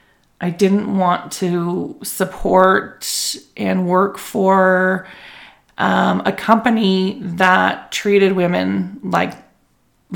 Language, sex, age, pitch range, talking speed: English, female, 30-49, 170-210 Hz, 90 wpm